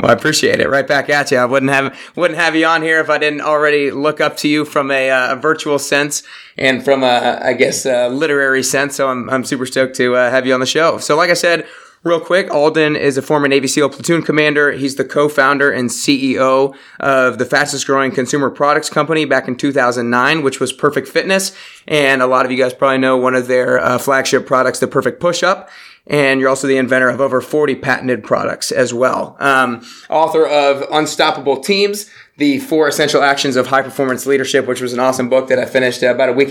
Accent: American